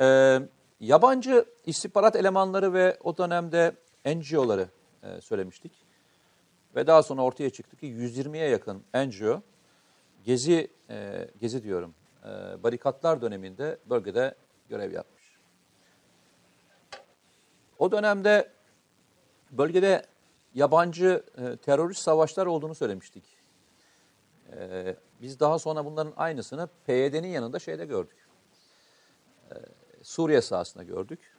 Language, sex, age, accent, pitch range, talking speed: Turkish, male, 50-69, native, 130-190 Hz, 100 wpm